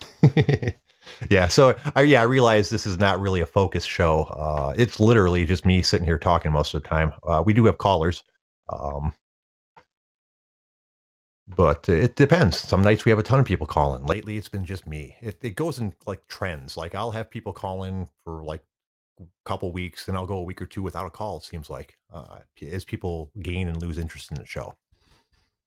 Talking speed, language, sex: 205 wpm, English, male